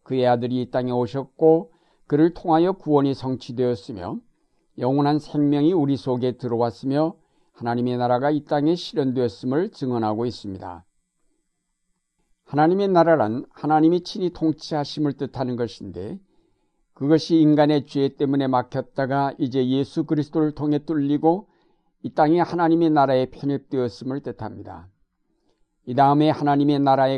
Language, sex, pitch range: Korean, male, 125-155 Hz